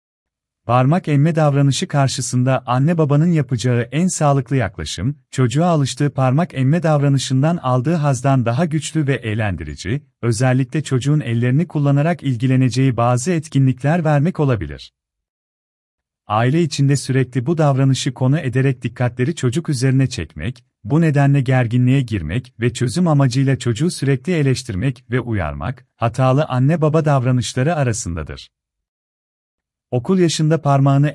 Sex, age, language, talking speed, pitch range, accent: male, 40-59, Turkish, 115 wpm, 120-145 Hz, native